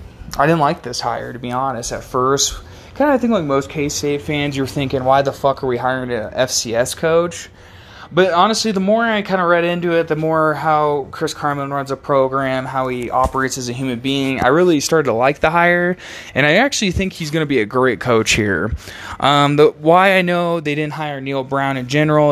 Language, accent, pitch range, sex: English, American, 120-150 Hz, male